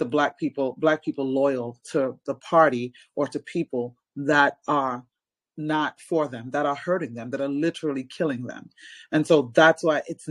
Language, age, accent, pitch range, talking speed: English, 30-49, American, 135-160 Hz, 175 wpm